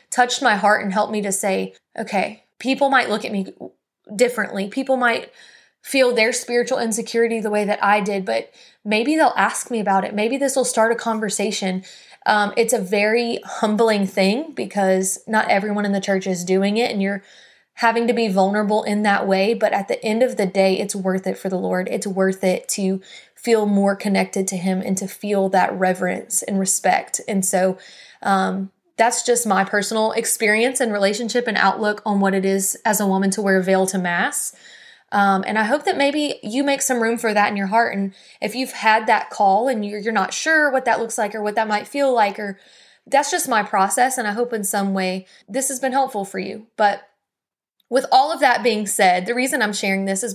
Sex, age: female, 20-39